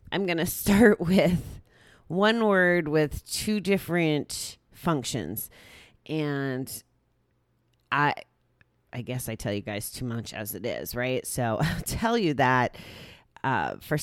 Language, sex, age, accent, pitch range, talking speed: English, female, 30-49, American, 130-170 Hz, 135 wpm